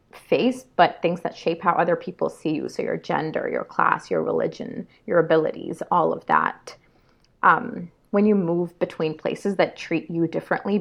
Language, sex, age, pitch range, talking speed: English, female, 30-49, 170-220 Hz, 180 wpm